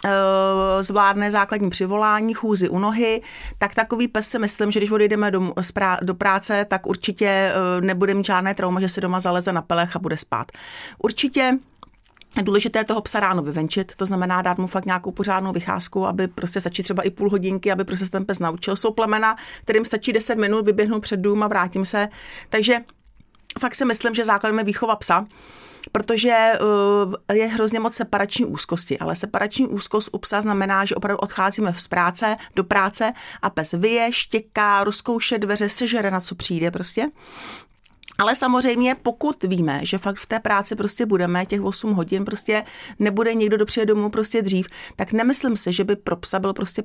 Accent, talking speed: native, 180 wpm